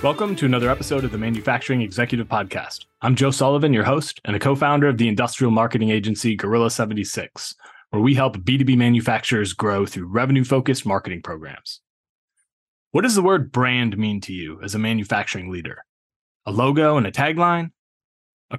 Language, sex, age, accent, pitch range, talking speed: English, male, 20-39, American, 110-140 Hz, 170 wpm